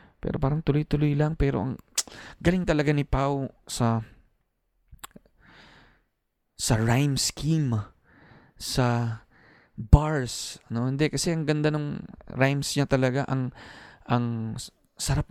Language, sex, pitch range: Filipino, male, 115-150 Hz